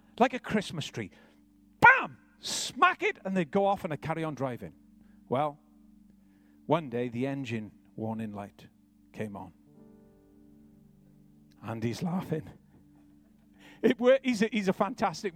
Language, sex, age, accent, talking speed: English, male, 50-69, British, 135 wpm